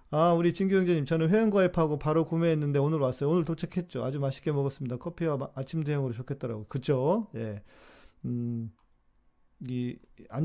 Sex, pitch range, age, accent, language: male, 115-165 Hz, 40-59, native, Korean